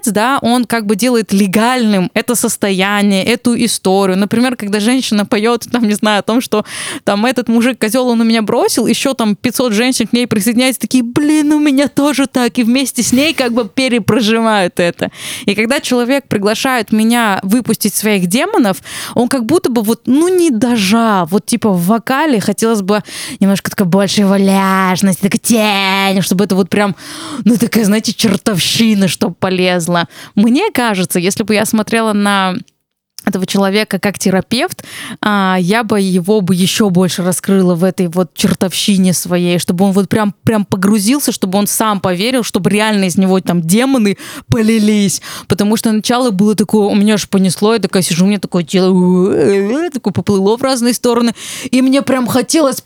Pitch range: 195-245 Hz